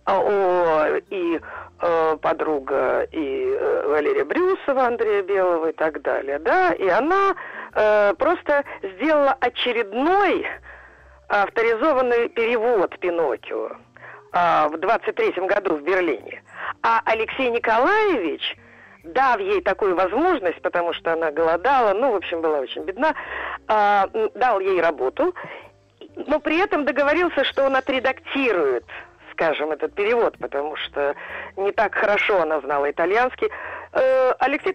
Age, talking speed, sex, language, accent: 50-69, 115 wpm, female, Russian, native